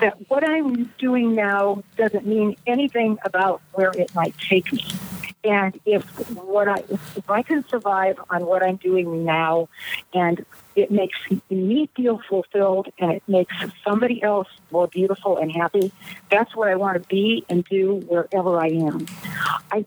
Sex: female